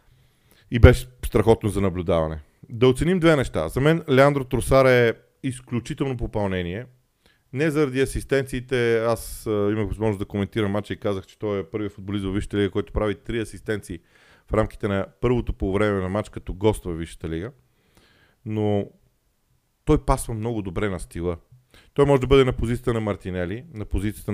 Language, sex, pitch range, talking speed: Bulgarian, male, 95-120 Hz, 170 wpm